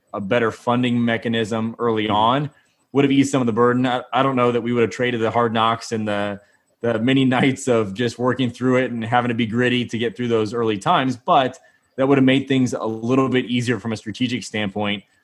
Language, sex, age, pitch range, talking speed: English, male, 20-39, 110-125 Hz, 235 wpm